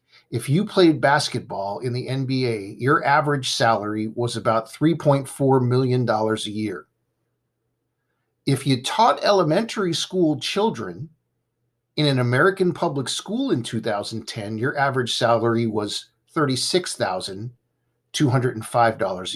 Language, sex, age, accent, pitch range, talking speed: English, male, 50-69, American, 115-145 Hz, 105 wpm